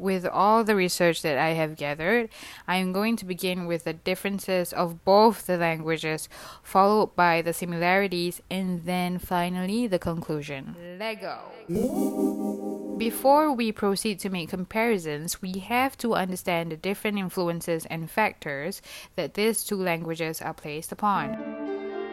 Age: 10-29